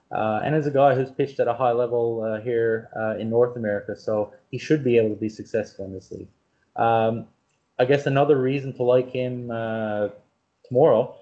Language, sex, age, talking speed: English, male, 20-39, 205 wpm